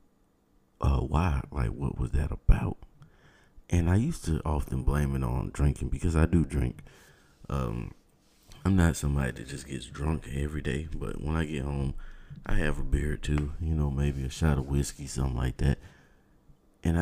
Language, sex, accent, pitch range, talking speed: English, male, American, 70-90 Hz, 185 wpm